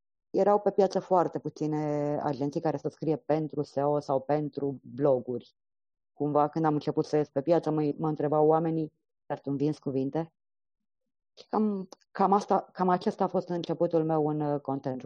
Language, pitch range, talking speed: Romanian, 140-180 Hz, 170 wpm